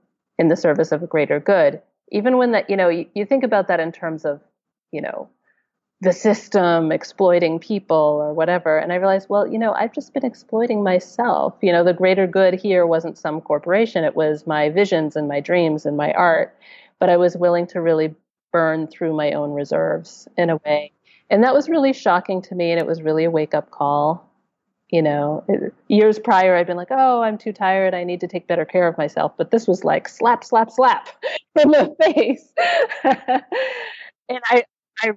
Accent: American